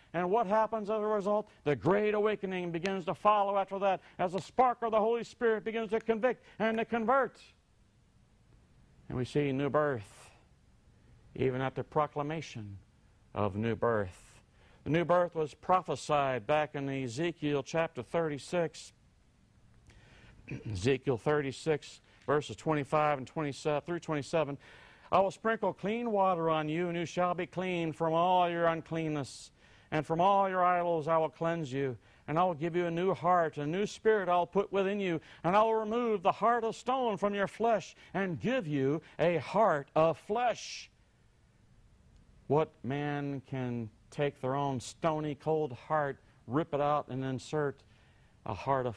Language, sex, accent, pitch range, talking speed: English, male, American, 120-180 Hz, 160 wpm